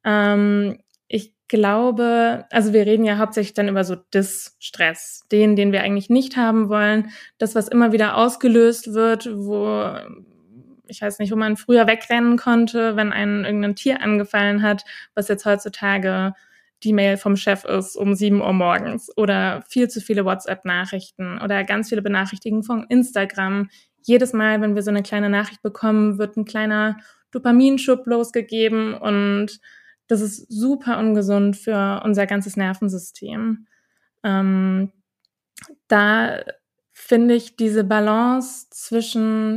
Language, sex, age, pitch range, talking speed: German, female, 20-39, 200-230 Hz, 140 wpm